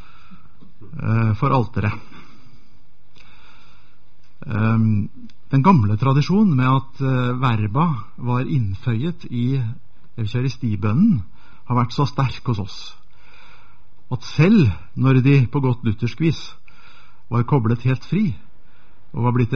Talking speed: 100 wpm